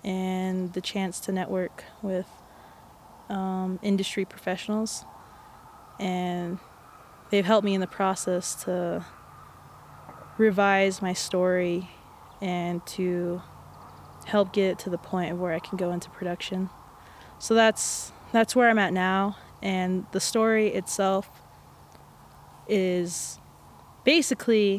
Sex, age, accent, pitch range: female, 20-39, American, 180-200 Hz